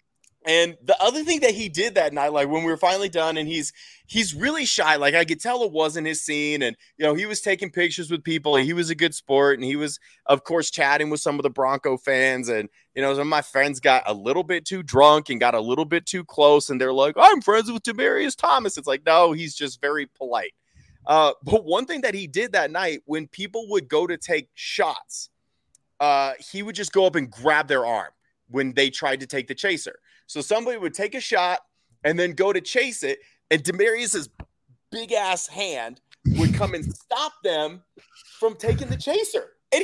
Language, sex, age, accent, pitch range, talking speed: English, male, 30-49, American, 150-230 Hz, 225 wpm